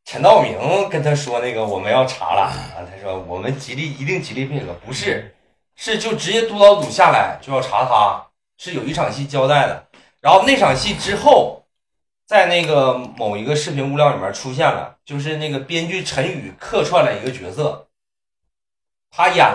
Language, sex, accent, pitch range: Chinese, male, native, 110-180 Hz